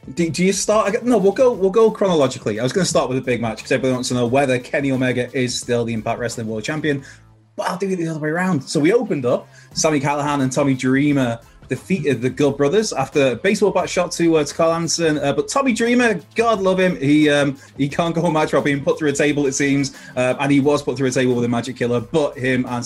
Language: English